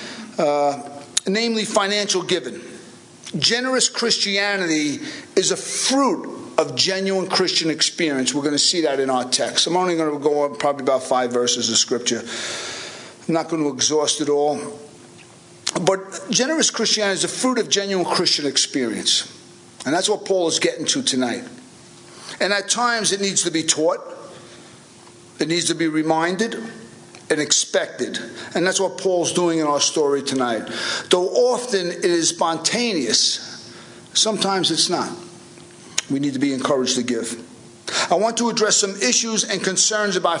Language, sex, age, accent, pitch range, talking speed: English, male, 50-69, American, 145-205 Hz, 155 wpm